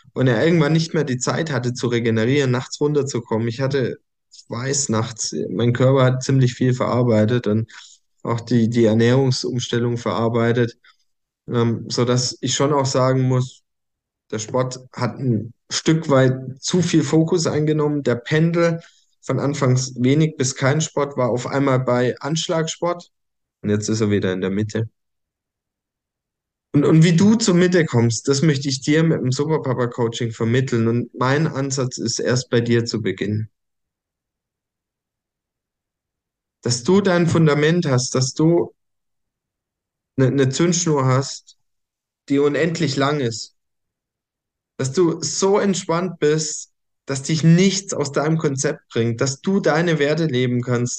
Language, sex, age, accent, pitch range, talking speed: English, male, 10-29, German, 120-155 Hz, 145 wpm